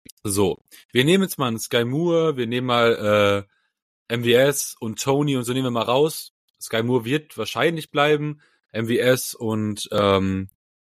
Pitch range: 100-145 Hz